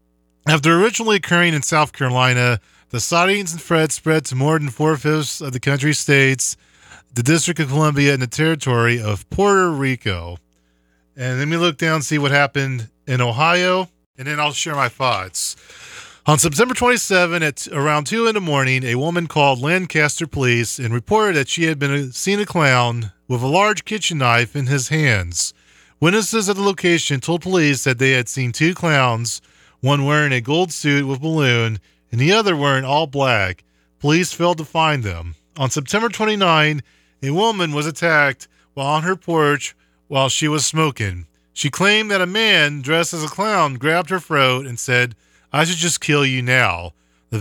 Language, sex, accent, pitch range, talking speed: English, male, American, 120-165 Hz, 180 wpm